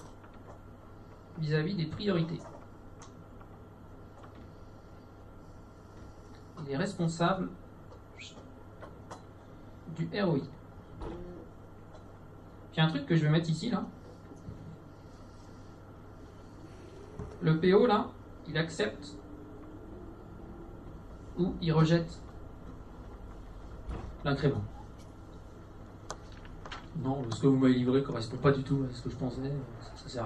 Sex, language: male, French